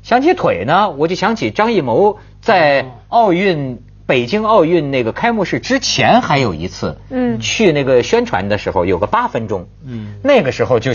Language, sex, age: Chinese, male, 50-69